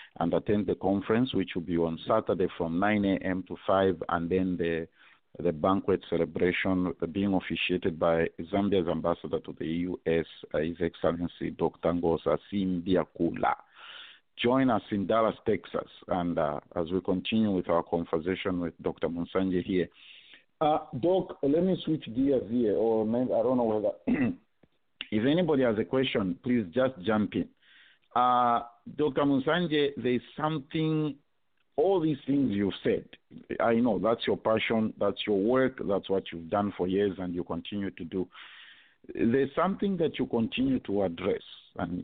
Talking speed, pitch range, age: 155 wpm, 90-130 Hz, 50-69